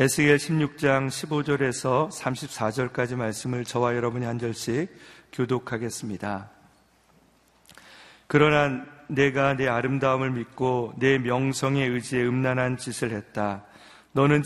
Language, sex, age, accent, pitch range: Korean, male, 40-59, native, 120-135 Hz